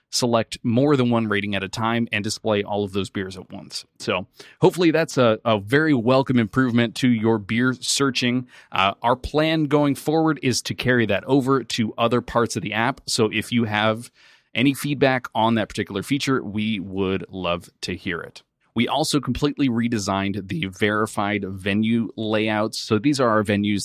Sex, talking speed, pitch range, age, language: male, 185 wpm, 105-130 Hz, 30-49, English